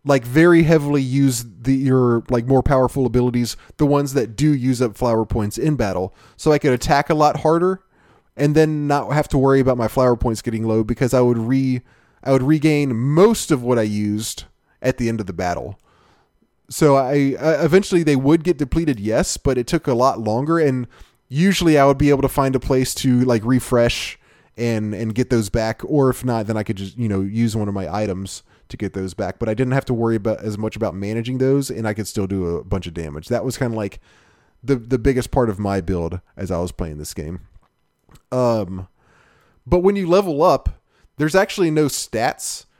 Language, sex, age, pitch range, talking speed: English, male, 20-39, 110-145 Hz, 220 wpm